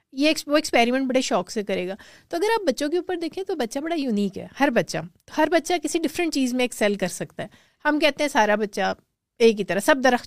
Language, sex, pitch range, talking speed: Urdu, female, 200-265 Hz, 250 wpm